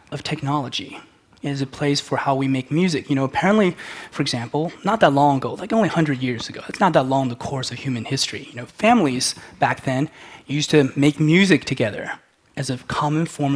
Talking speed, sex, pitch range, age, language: 215 wpm, male, 135-170 Hz, 20-39, Russian